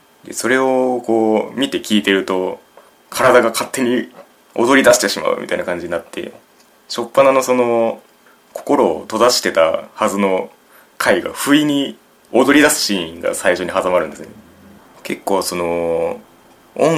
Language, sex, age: Japanese, male, 20-39